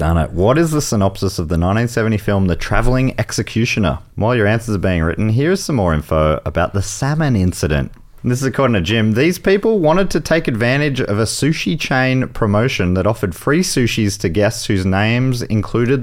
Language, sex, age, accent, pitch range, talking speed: English, male, 30-49, Australian, 100-135 Hz, 195 wpm